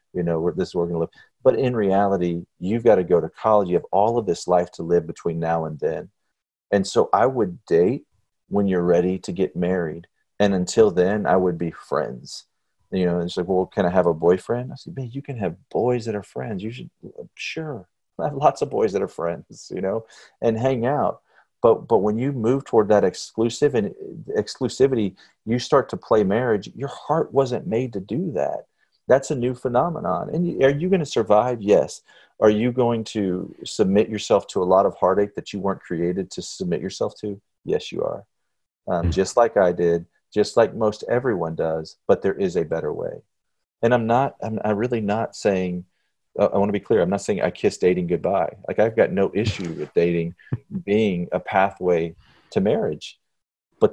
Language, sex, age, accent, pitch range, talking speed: English, male, 40-59, American, 90-120 Hz, 210 wpm